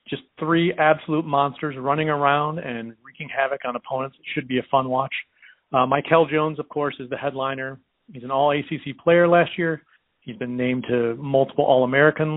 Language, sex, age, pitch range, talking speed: English, male, 40-59, 135-155 Hz, 180 wpm